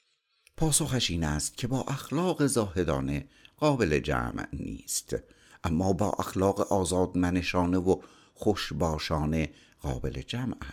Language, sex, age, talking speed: Persian, male, 60-79, 100 wpm